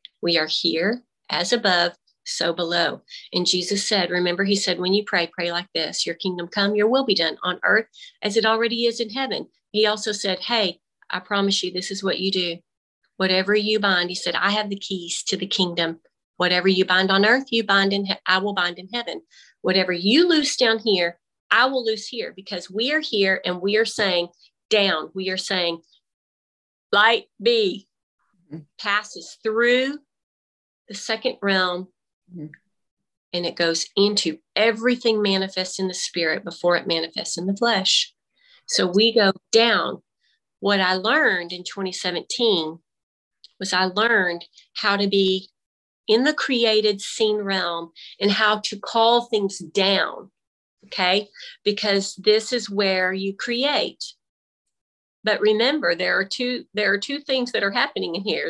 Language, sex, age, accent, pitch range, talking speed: English, female, 40-59, American, 180-225 Hz, 165 wpm